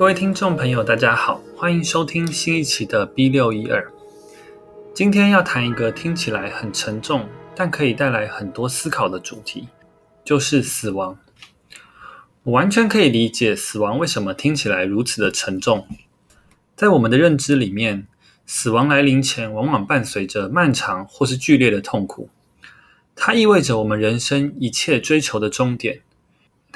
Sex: male